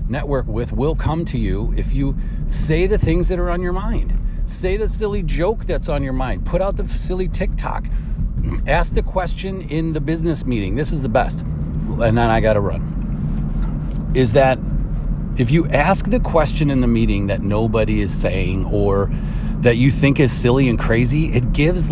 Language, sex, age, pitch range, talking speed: English, male, 40-59, 110-160 Hz, 190 wpm